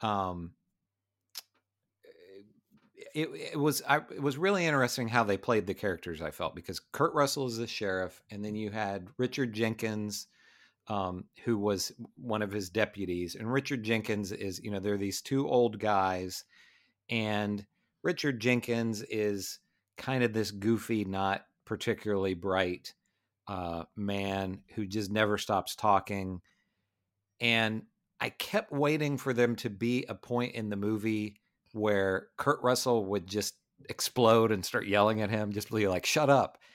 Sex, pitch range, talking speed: male, 100-120 Hz, 150 wpm